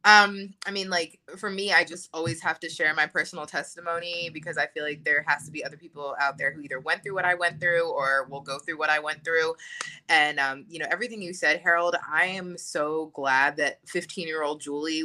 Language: English